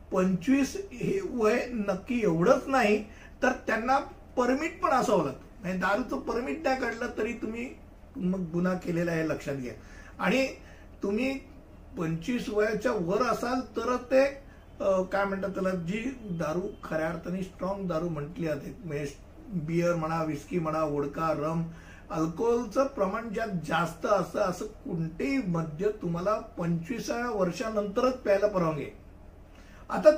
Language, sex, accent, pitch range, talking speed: Hindi, male, native, 170-250 Hz, 90 wpm